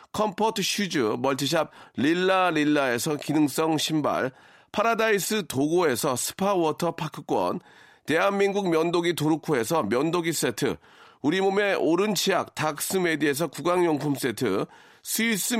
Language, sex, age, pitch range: Korean, male, 40-59, 155-200 Hz